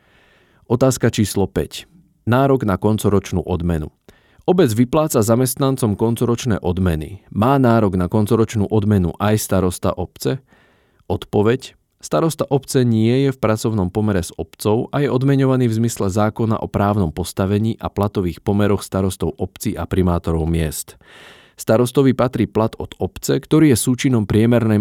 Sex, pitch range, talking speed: male, 95-120 Hz, 135 wpm